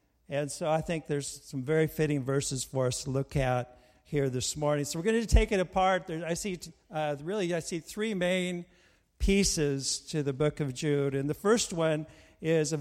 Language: English